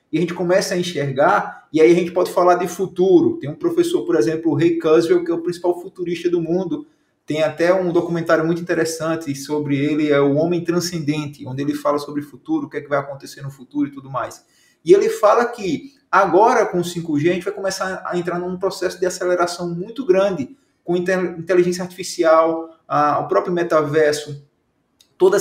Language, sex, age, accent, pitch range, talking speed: Portuguese, male, 20-39, Brazilian, 155-205 Hz, 200 wpm